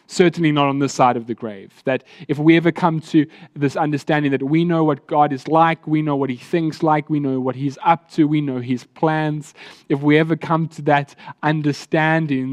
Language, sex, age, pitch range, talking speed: English, male, 20-39, 130-155 Hz, 220 wpm